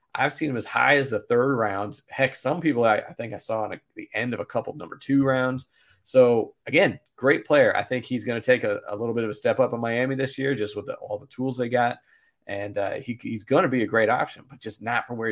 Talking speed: 280 wpm